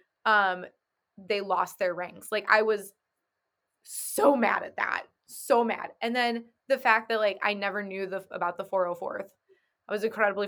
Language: English